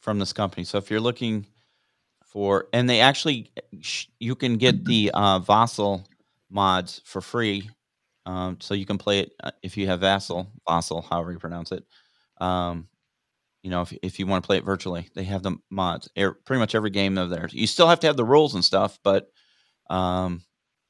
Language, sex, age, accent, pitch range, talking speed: English, male, 30-49, American, 95-120 Hz, 200 wpm